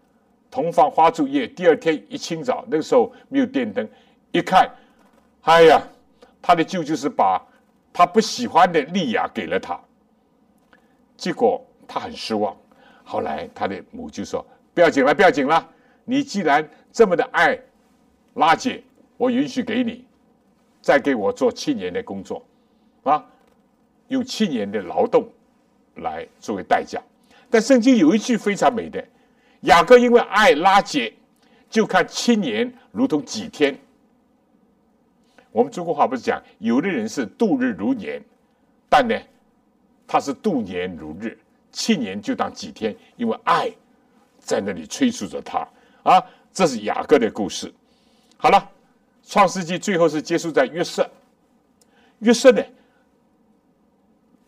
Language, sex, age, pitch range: Chinese, male, 60-79, 240-250 Hz